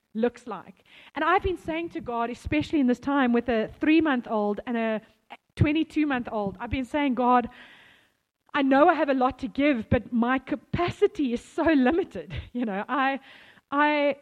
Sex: female